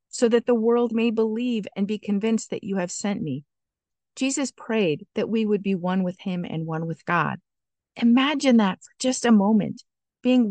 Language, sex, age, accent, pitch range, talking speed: English, female, 50-69, American, 180-225 Hz, 195 wpm